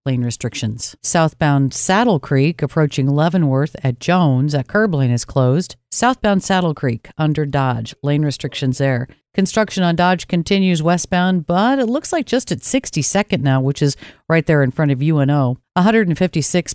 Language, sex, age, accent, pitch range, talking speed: English, female, 50-69, American, 140-180 Hz, 160 wpm